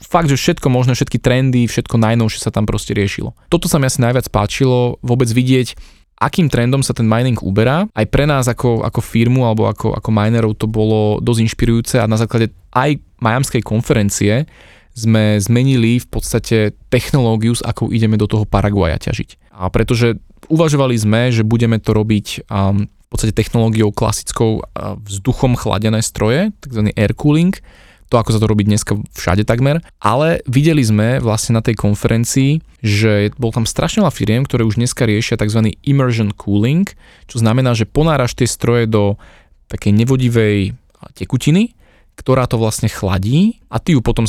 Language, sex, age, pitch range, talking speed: Slovak, male, 20-39, 105-125 Hz, 165 wpm